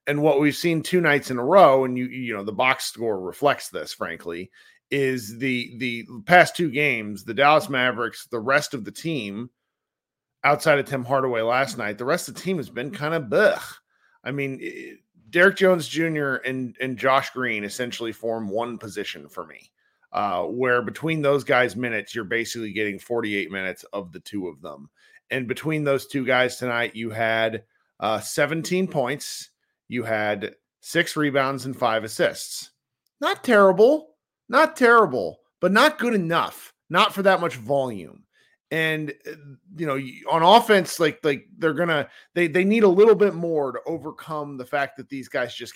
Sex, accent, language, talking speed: male, American, English, 180 wpm